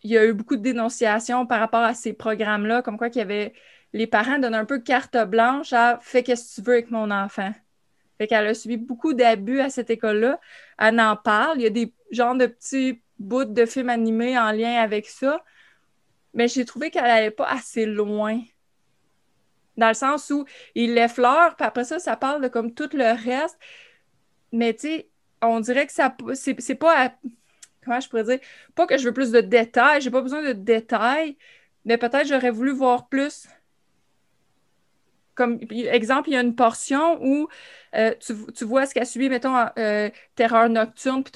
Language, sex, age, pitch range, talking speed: French, female, 20-39, 225-270 Hz, 200 wpm